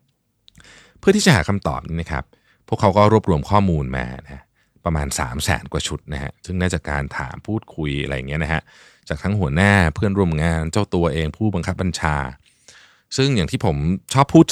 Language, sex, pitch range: Thai, male, 75-110 Hz